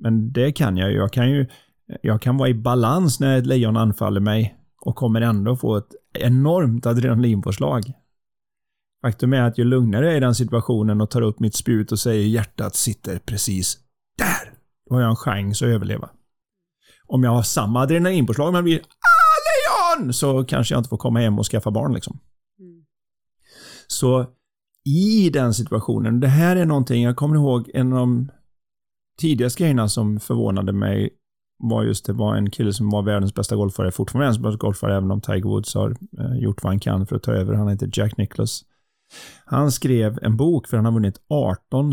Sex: male